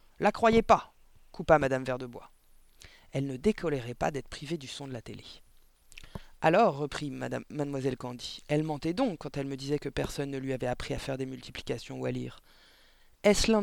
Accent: French